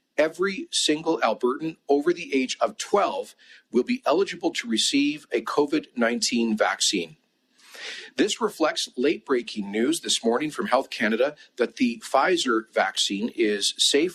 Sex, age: male, 40-59